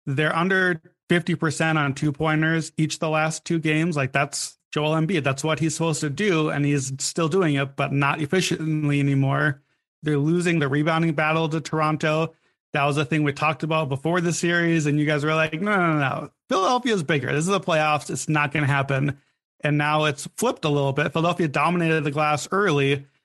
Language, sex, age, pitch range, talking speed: English, male, 30-49, 140-170 Hz, 200 wpm